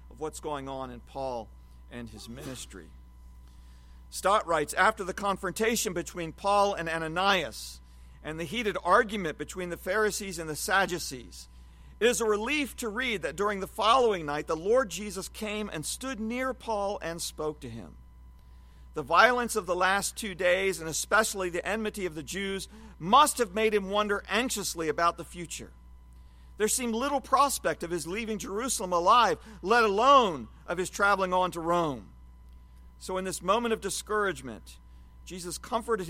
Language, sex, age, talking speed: English, male, 50-69, 165 wpm